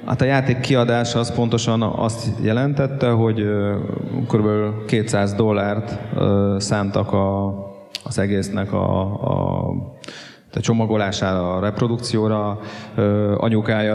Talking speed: 95 wpm